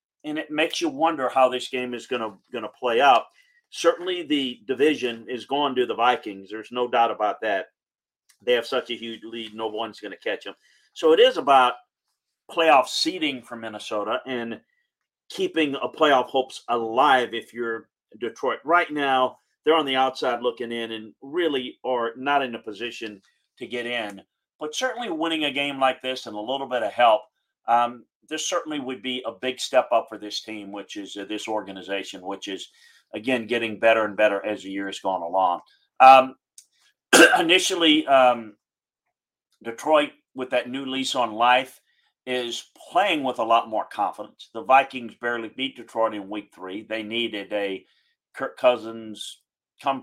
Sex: male